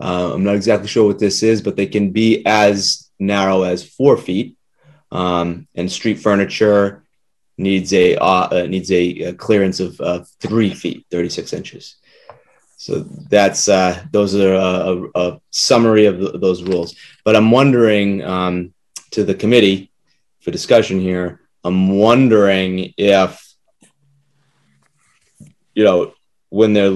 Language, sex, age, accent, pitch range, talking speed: English, male, 30-49, American, 95-110 Hz, 135 wpm